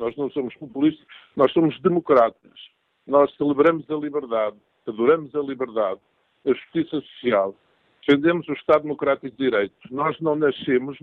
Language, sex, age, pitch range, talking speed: Portuguese, male, 50-69, 145-180 Hz, 140 wpm